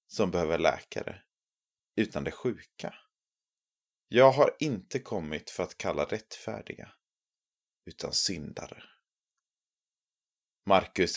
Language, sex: Swedish, male